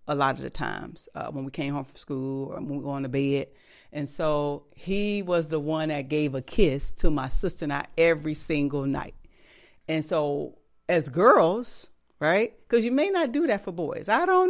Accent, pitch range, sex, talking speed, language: American, 145-180 Hz, female, 215 wpm, English